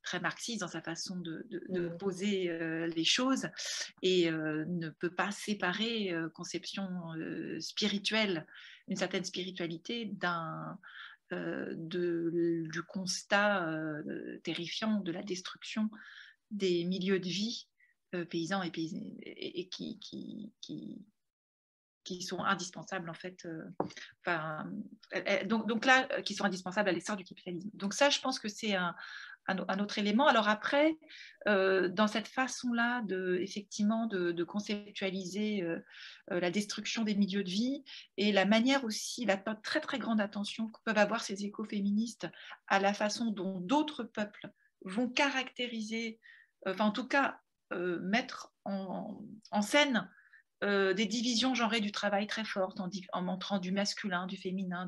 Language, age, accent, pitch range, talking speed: French, 40-59, French, 180-225 Hz, 155 wpm